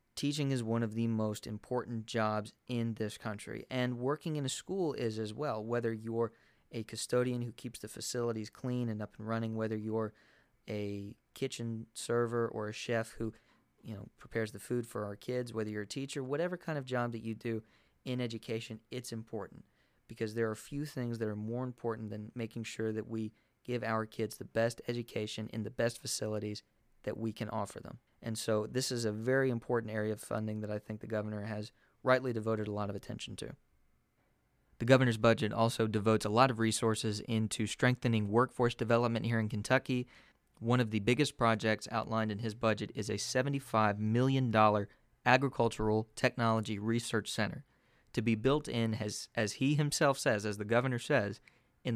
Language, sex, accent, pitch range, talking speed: English, male, American, 110-125 Hz, 190 wpm